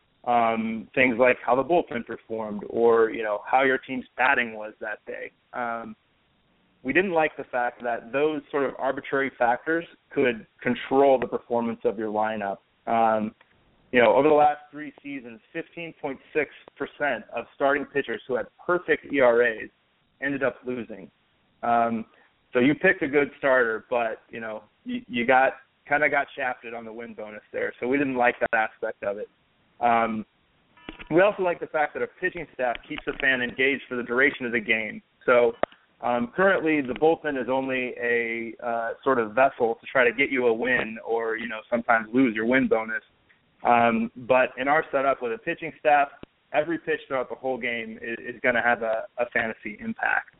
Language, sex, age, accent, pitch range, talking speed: English, male, 30-49, American, 115-150 Hz, 185 wpm